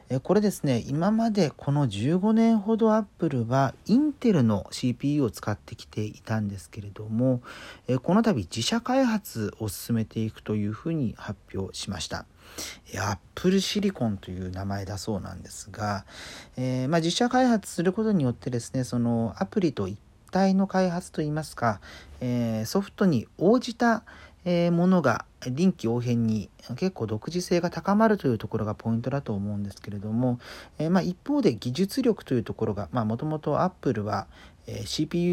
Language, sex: Japanese, male